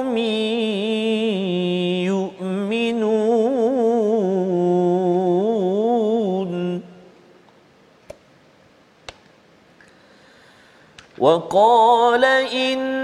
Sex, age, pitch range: male, 50-69, 225-270 Hz